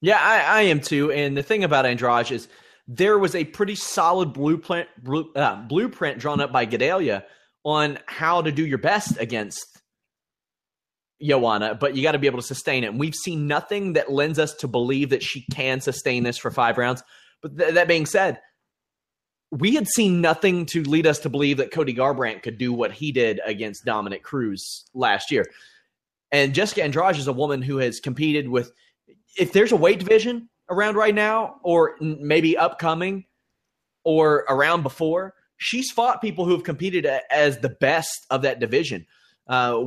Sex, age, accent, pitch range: male, 30-49, American, 130-170 Hz